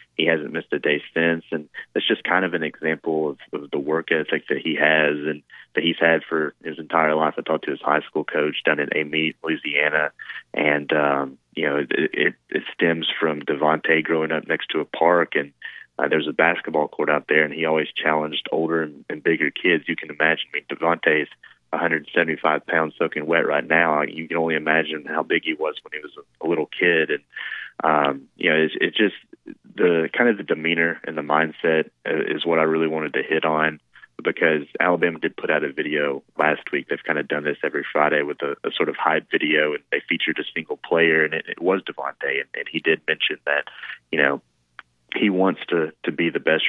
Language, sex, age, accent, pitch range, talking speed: English, male, 20-39, American, 75-85 Hz, 220 wpm